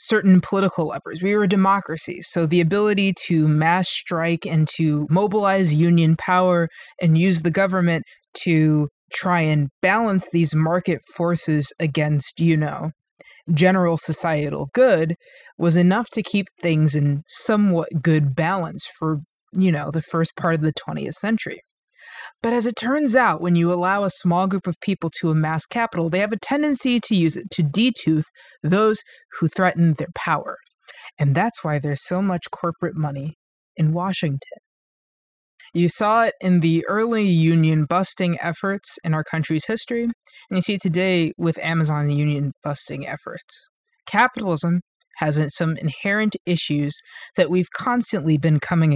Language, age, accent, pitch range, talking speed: English, 20-39, American, 160-195 Hz, 155 wpm